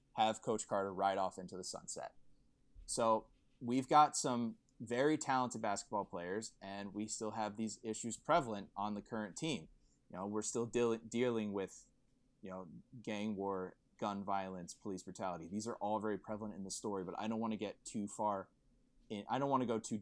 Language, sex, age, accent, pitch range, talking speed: English, male, 20-39, American, 95-120 Hz, 195 wpm